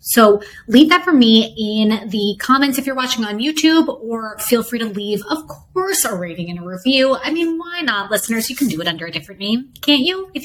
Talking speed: 235 wpm